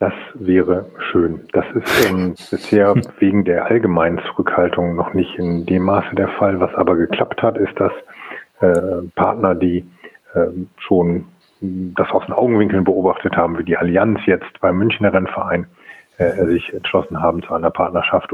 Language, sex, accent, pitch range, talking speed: German, male, German, 90-100 Hz, 160 wpm